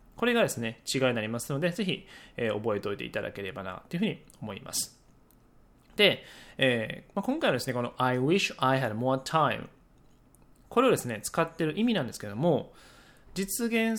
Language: Japanese